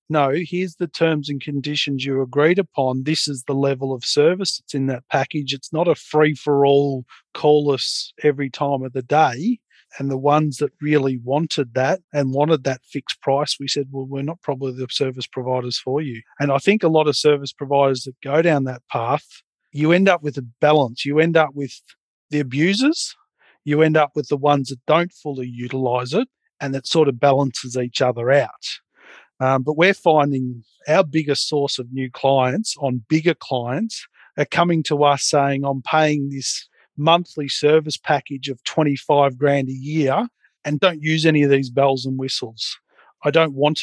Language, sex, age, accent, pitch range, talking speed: English, male, 40-59, Australian, 135-150 Hz, 190 wpm